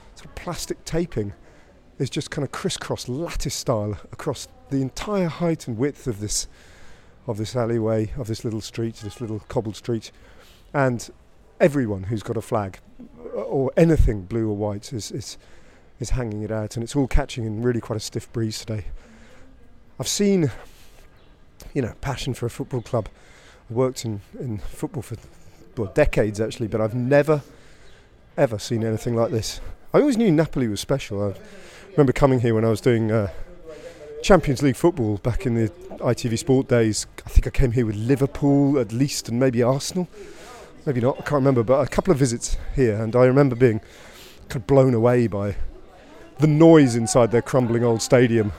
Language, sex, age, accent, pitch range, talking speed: English, male, 40-59, British, 110-140 Hz, 180 wpm